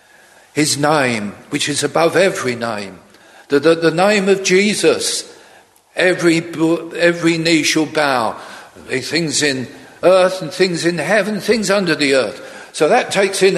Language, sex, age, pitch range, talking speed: English, male, 50-69, 150-200 Hz, 145 wpm